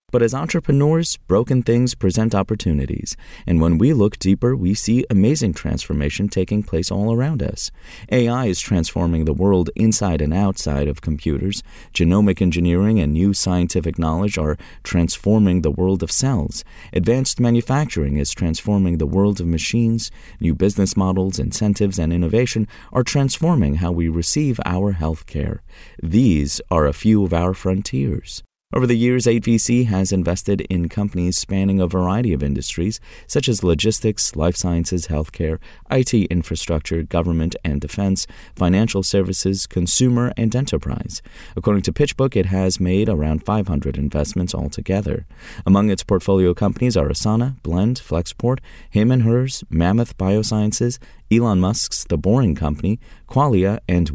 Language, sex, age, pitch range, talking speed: English, male, 30-49, 85-115 Hz, 145 wpm